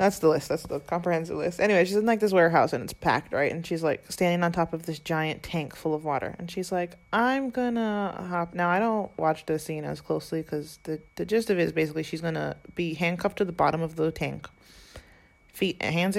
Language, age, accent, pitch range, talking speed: English, 20-39, American, 160-195 Hz, 235 wpm